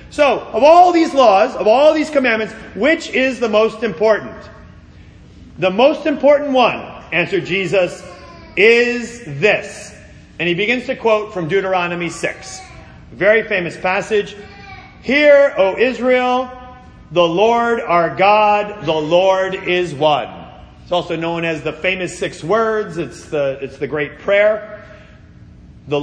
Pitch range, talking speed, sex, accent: 155-225 Hz, 140 wpm, male, American